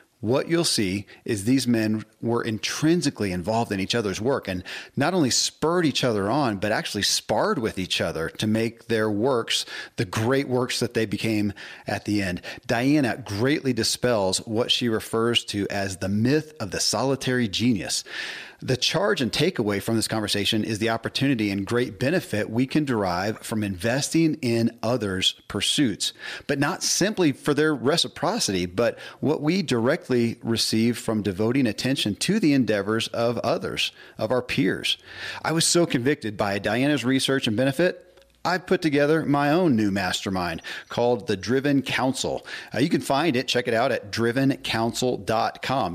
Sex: male